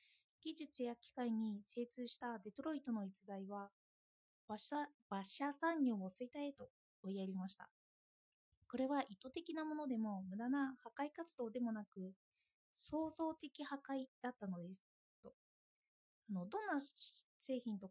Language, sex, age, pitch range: Japanese, female, 20-39, 215-285 Hz